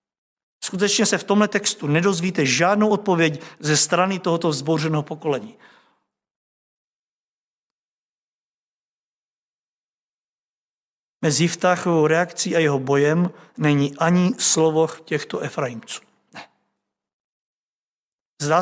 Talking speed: 80 wpm